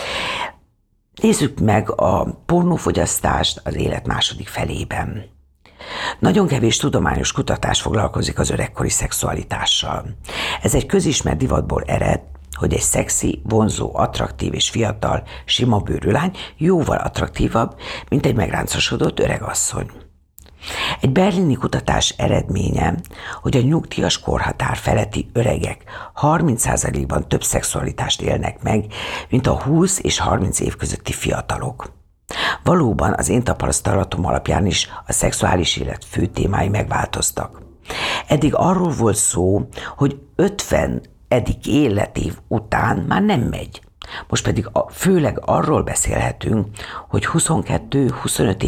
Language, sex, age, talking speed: Hungarian, female, 60-79, 110 wpm